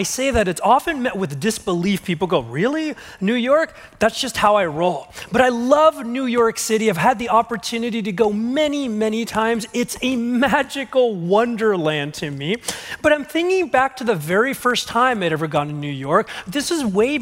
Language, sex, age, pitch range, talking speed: English, male, 30-49, 180-250 Hz, 200 wpm